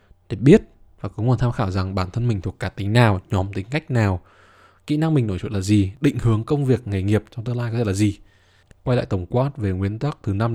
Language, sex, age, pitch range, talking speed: Vietnamese, male, 20-39, 100-130 Hz, 275 wpm